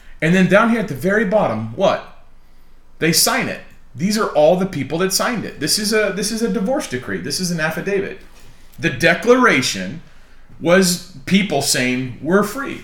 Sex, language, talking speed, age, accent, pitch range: male, English, 180 wpm, 30-49, American, 140-195 Hz